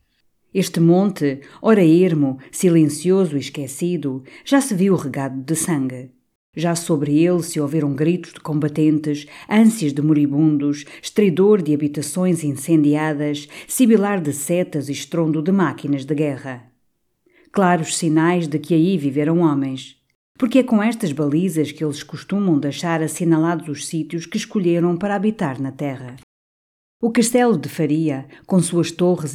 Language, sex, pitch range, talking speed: Portuguese, female, 145-180 Hz, 140 wpm